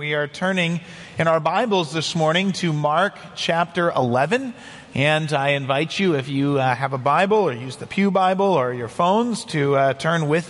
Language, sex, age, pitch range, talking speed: English, male, 40-59, 145-185 Hz, 195 wpm